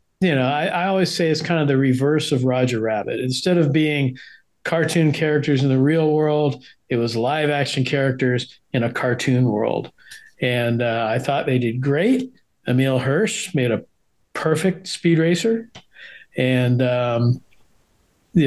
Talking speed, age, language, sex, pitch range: 155 wpm, 50-69, English, male, 125-155 Hz